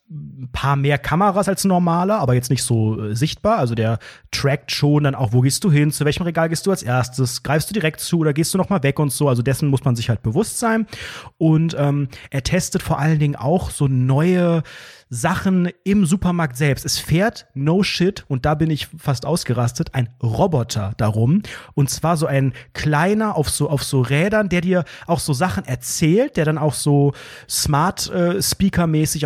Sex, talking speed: male, 200 wpm